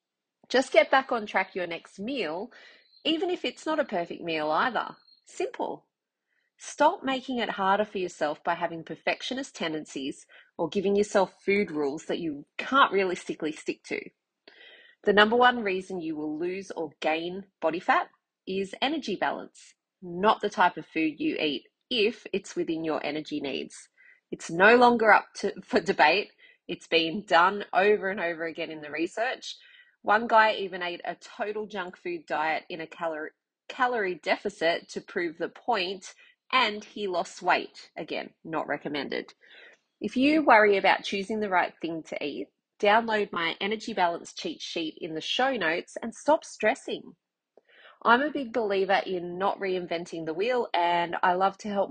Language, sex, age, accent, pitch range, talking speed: English, female, 30-49, Australian, 170-250 Hz, 165 wpm